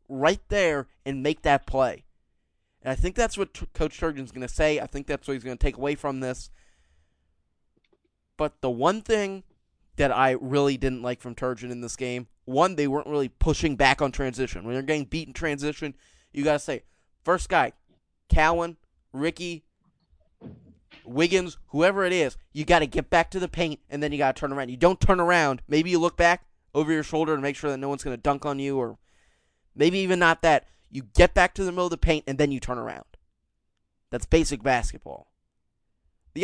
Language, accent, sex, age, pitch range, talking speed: English, American, male, 20-39, 130-170 Hz, 210 wpm